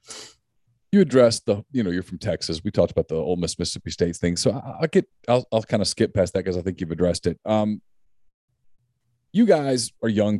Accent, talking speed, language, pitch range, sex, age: American, 220 wpm, English, 90-105 Hz, male, 40-59